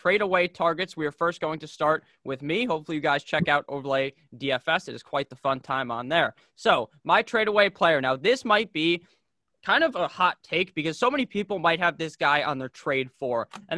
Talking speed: 230 wpm